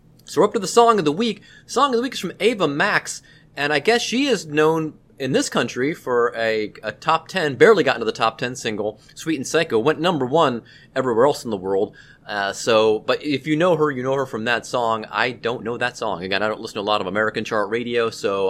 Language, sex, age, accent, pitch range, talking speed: English, male, 30-49, American, 115-155 Hz, 255 wpm